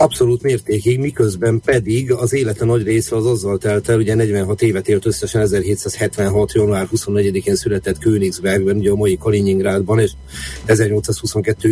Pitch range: 105-115 Hz